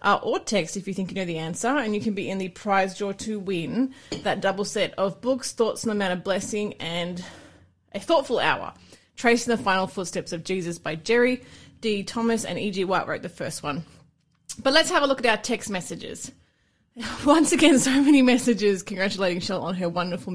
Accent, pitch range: Australian, 180-250 Hz